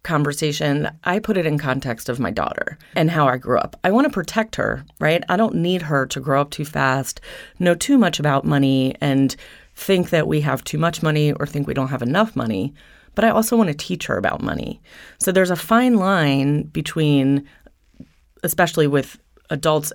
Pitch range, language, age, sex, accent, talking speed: 140-175 Hz, English, 30-49, female, American, 200 wpm